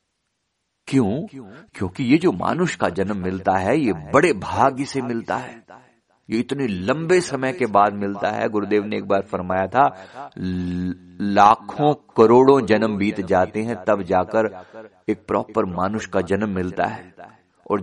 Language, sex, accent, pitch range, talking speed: Hindi, male, native, 100-135 Hz, 150 wpm